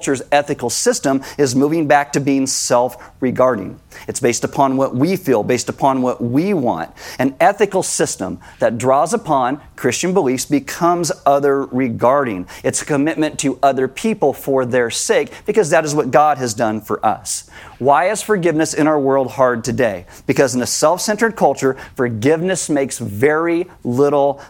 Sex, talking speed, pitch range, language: male, 155 wpm, 130-160 Hz, English